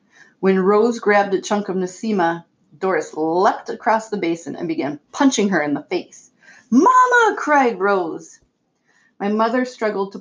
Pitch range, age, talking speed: 175-235 Hz, 30-49, 155 wpm